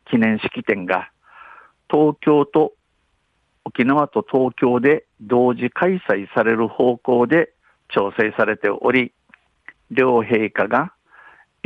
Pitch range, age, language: 110-130 Hz, 50-69, Japanese